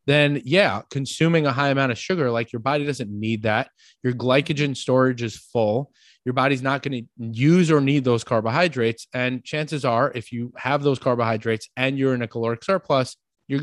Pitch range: 115-145 Hz